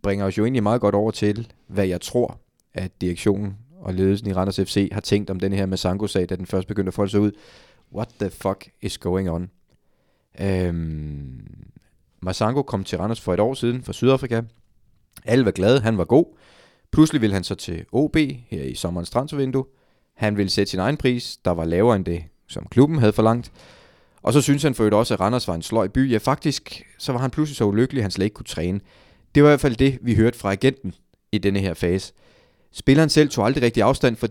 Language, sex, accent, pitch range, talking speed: Danish, male, native, 95-120 Hz, 225 wpm